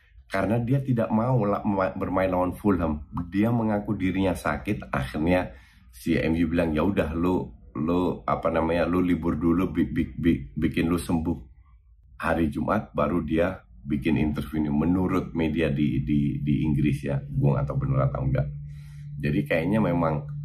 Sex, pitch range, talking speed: male, 70-90 Hz, 150 wpm